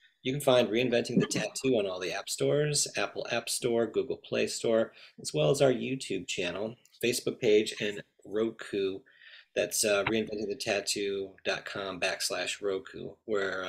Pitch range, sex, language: 100-130 Hz, male, English